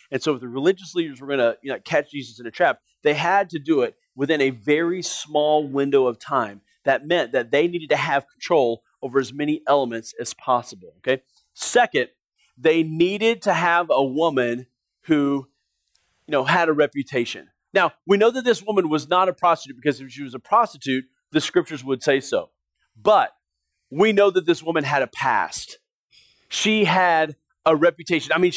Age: 30-49